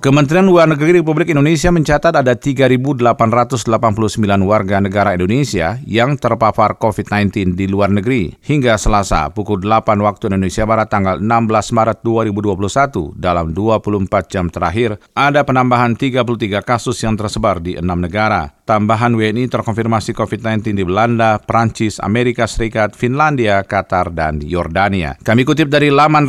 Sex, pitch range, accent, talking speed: male, 100-125 Hz, native, 130 wpm